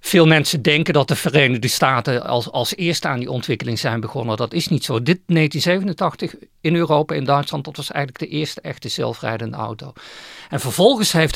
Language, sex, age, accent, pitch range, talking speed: Dutch, male, 50-69, Dutch, 130-170 Hz, 190 wpm